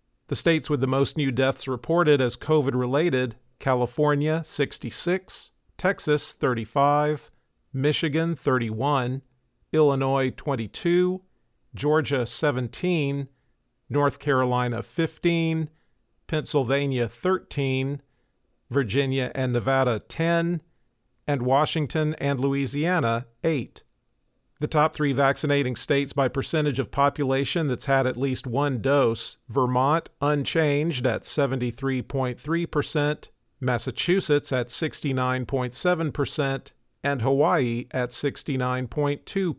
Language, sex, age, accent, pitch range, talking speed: English, male, 50-69, American, 130-155 Hz, 95 wpm